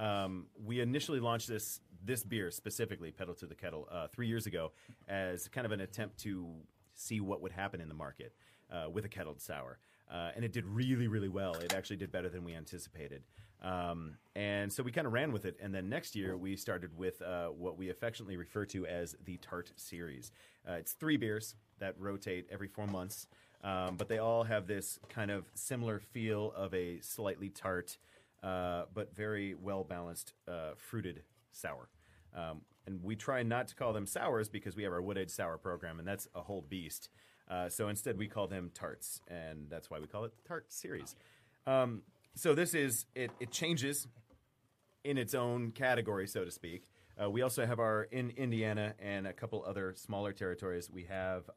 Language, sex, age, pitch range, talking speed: English, male, 30-49, 90-110 Hz, 195 wpm